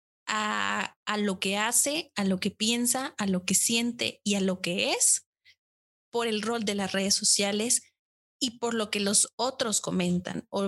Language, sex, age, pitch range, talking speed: Spanish, female, 20-39, 205-255 Hz, 185 wpm